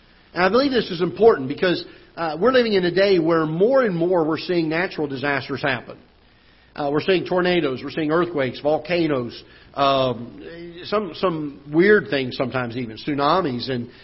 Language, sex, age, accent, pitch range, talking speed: English, male, 50-69, American, 140-180 Hz, 165 wpm